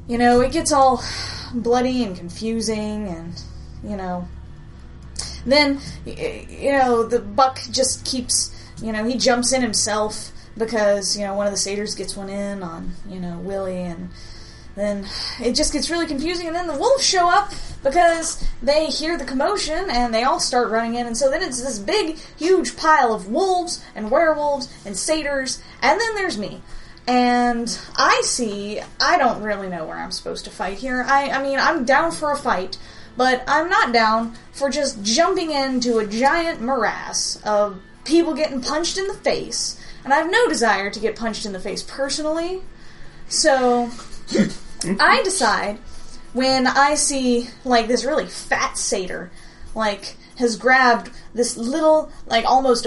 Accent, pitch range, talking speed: American, 215-290 Hz, 170 wpm